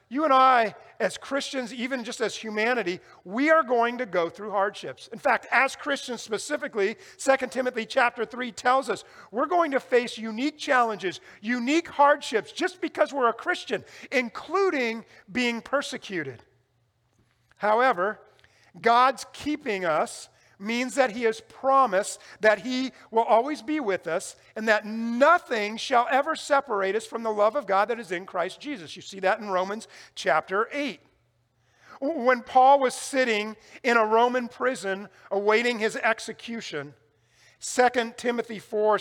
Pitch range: 185-250 Hz